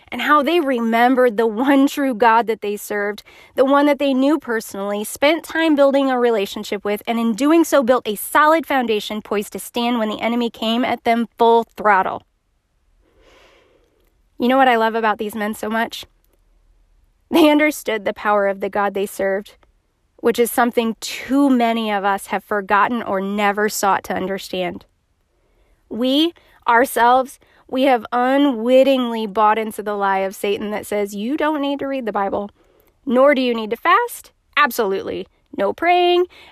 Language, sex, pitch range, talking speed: English, female, 210-280 Hz, 170 wpm